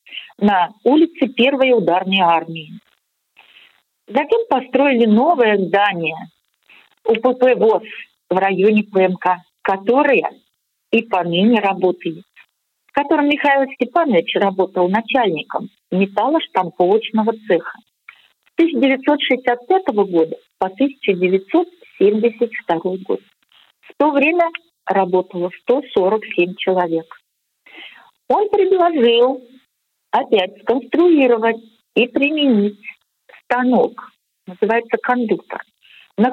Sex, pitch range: female, 190-285 Hz